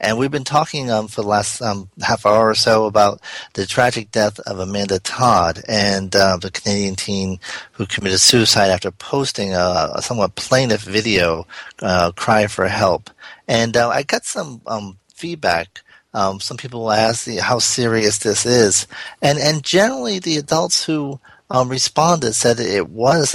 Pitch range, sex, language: 100-130 Hz, male, English